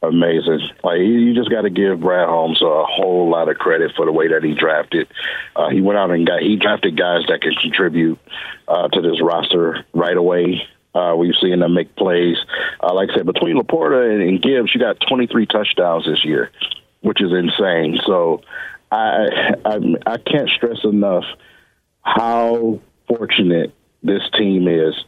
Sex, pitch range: male, 90-115 Hz